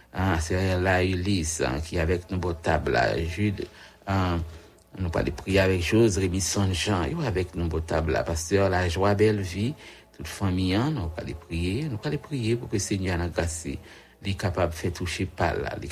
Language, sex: English, male